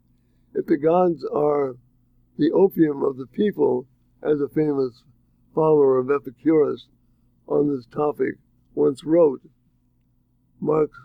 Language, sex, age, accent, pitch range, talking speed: English, male, 60-79, American, 125-170 Hz, 115 wpm